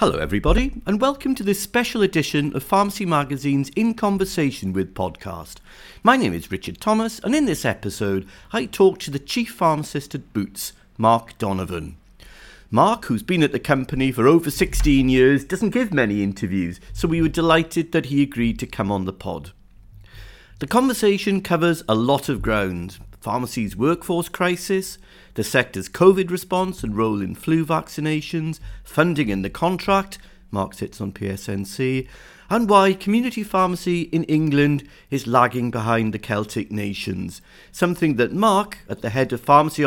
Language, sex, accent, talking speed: English, male, British, 160 wpm